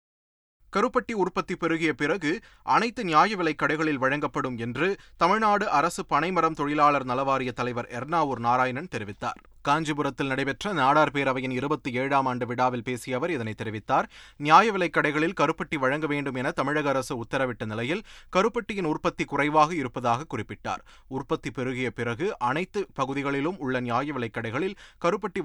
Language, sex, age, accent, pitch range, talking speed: Tamil, male, 30-49, native, 125-165 Hz, 125 wpm